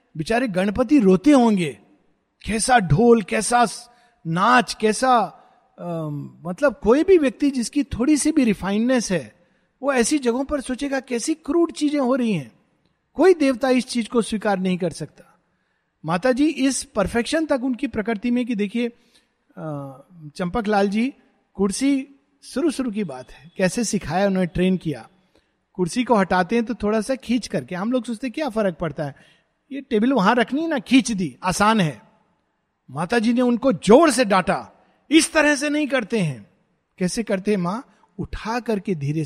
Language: Hindi